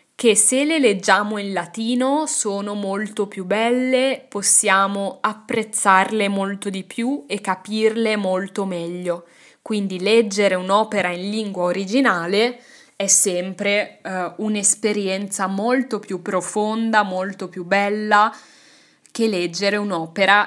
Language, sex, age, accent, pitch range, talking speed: Italian, female, 20-39, native, 185-225 Hz, 110 wpm